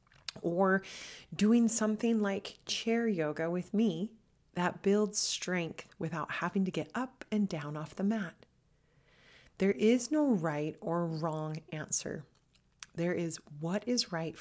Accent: American